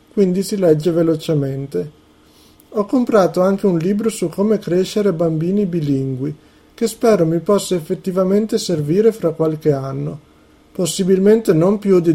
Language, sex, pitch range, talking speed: Italian, male, 150-200 Hz, 135 wpm